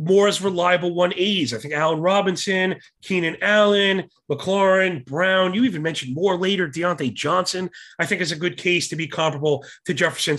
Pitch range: 150-205 Hz